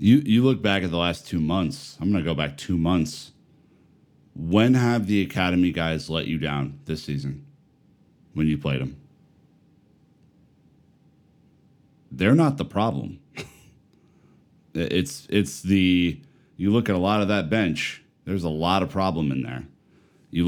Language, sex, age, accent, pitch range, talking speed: English, male, 30-49, American, 80-95 Hz, 155 wpm